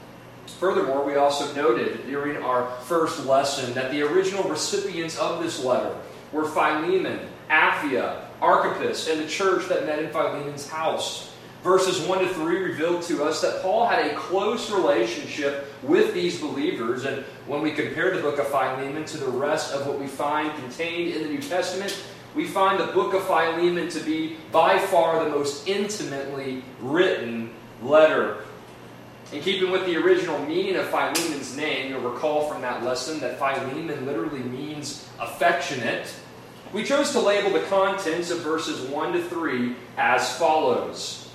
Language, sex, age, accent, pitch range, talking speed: English, male, 30-49, American, 140-185 Hz, 160 wpm